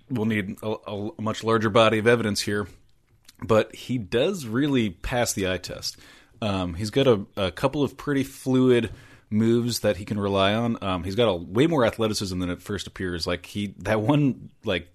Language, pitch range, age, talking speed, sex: English, 95-115 Hz, 30-49, 195 wpm, male